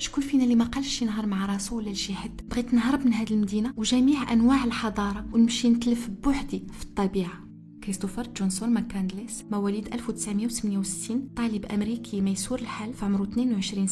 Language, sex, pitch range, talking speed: Arabic, female, 200-235 Hz, 145 wpm